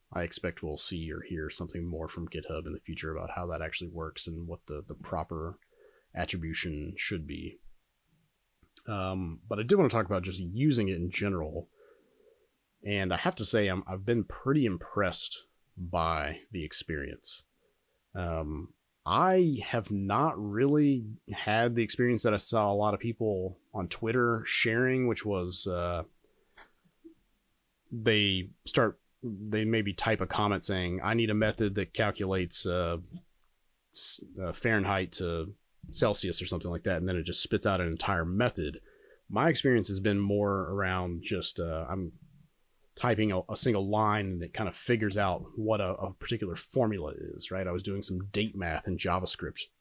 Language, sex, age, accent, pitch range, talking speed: English, male, 30-49, American, 85-110 Hz, 165 wpm